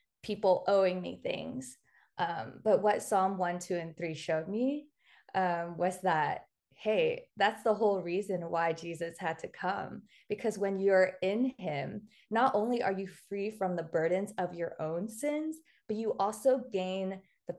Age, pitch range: 20-39, 180-220 Hz